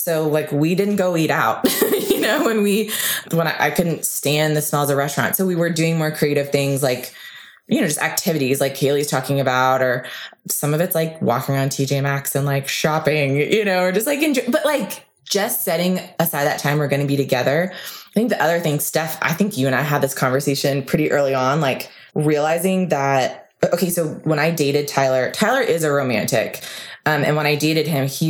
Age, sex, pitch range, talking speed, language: 20-39, female, 140-165 Hz, 220 wpm, English